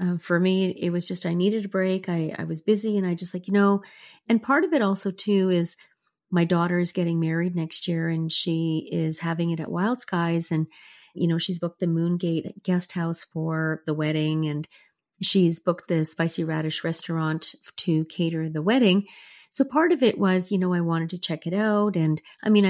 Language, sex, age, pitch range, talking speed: English, female, 40-59, 170-200 Hz, 215 wpm